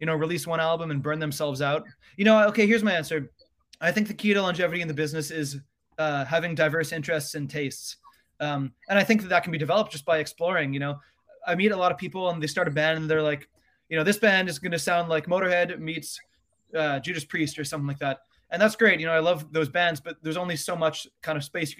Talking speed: 260 wpm